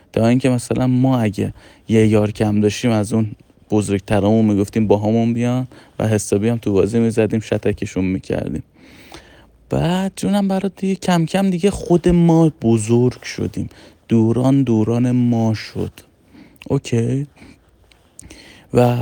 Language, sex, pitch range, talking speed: Persian, male, 110-145 Hz, 135 wpm